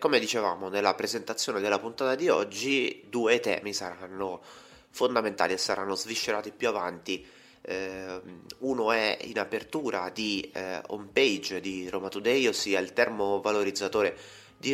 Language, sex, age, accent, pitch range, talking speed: Italian, male, 30-49, native, 95-110 Hz, 135 wpm